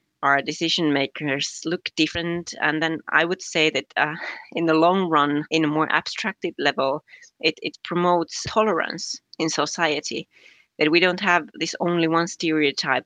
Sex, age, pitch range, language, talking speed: female, 30-49, 150-185 Hz, Finnish, 160 wpm